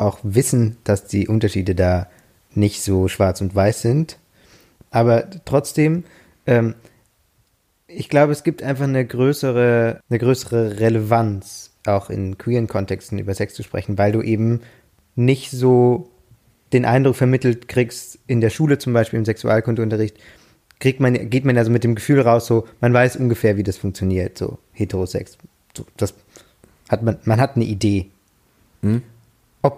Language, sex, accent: German, male, German